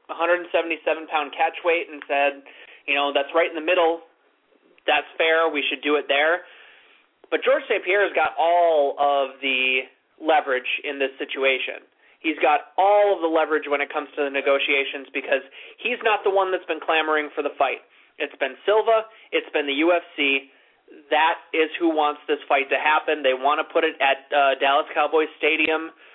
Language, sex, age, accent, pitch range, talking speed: English, male, 20-39, American, 140-185 Hz, 185 wpm